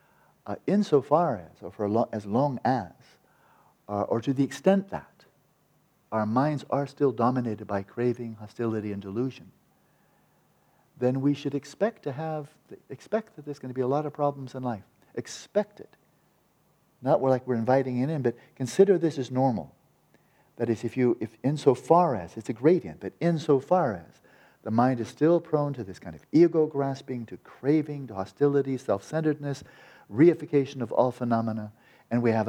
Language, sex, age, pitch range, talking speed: English, male, 50-69, 105-145 Hz, 165 wpm